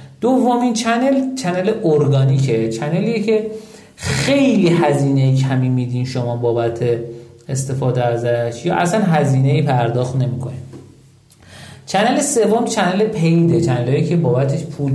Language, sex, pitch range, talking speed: Persian, male, 130-180 Hz, 110 wpm